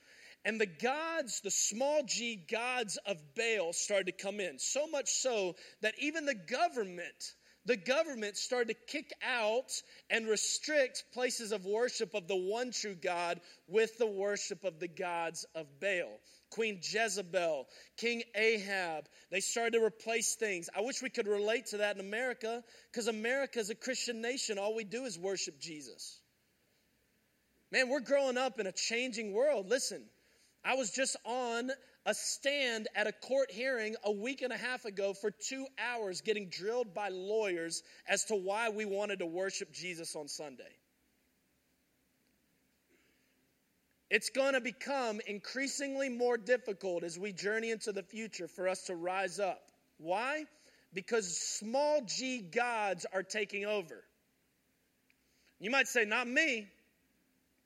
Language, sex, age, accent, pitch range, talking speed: English, male, 30-49, American, 200-250 Hz, 155 wpm